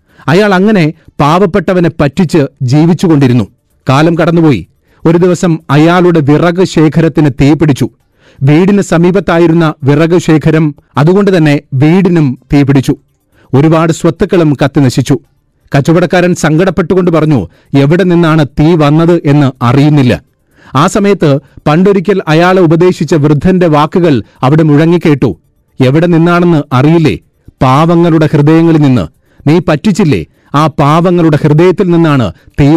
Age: 40-59